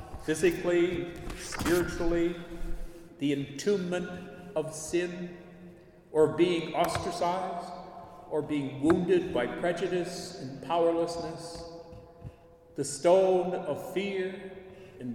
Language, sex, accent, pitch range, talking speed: English, male, American, 160-190 Hz, 85 wpm